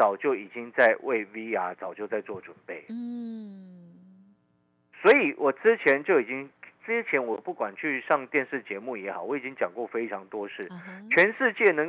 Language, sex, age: Chinese, male, 50-69